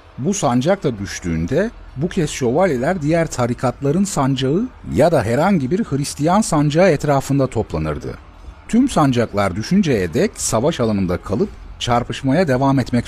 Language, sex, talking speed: Turkish, male, 125 wpm